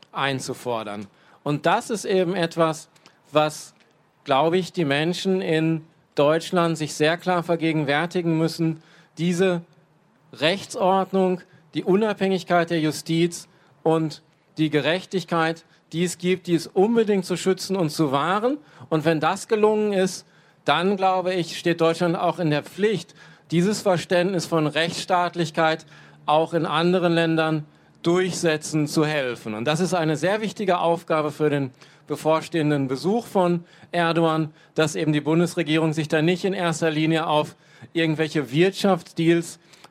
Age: 40-59